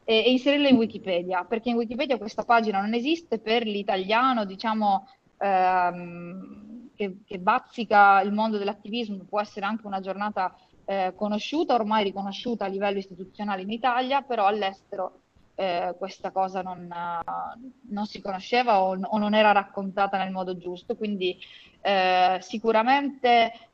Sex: female